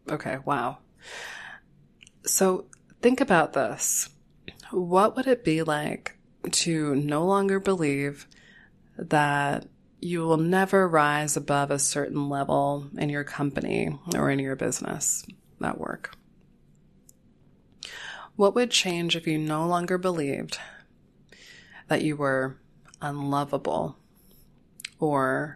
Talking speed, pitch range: 110 wpm, 145-195 Hz